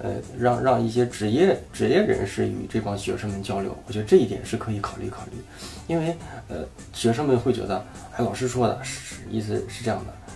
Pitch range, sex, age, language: 105-125 Hz, male, 20-39, Chinese